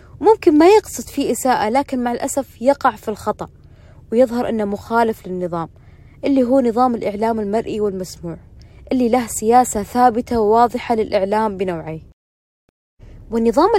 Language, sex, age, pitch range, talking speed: Arabic, female, 20-39, 210-260 Hz, 125 wpm